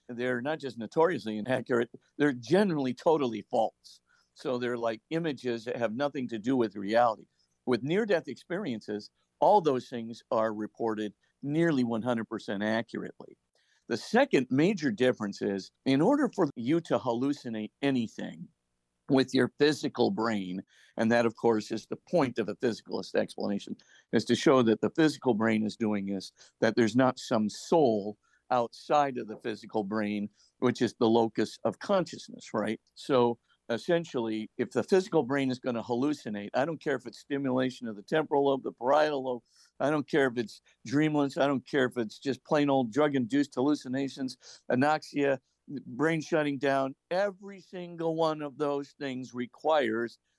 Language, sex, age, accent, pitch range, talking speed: English, male, 50-69, American, 115-145 Hz, 160 wpm